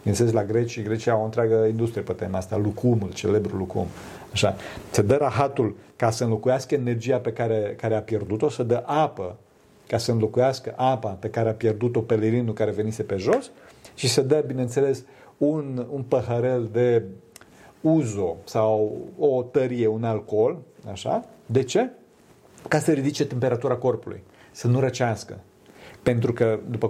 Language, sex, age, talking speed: Romanian, male, 40-59, 155 wpm